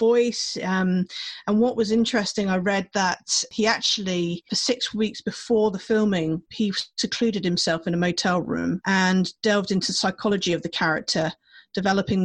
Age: 30-49